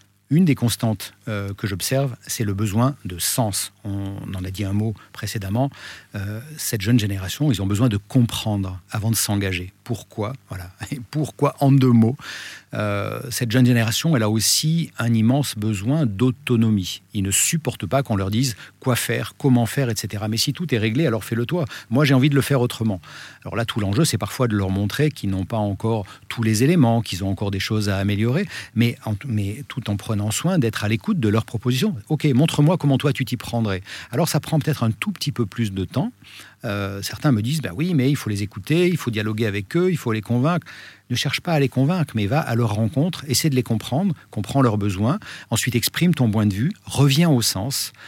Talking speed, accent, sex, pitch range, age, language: 220 wpm, French, male, 105-135 Hz, 50-69, French